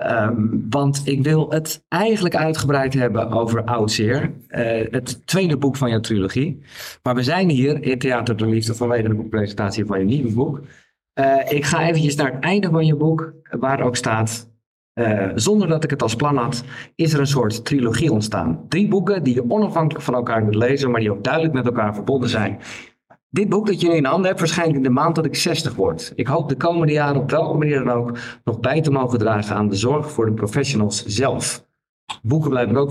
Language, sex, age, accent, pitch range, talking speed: Dutch, male, 50-69, Dutch, 115-155 Hz, 215 wpm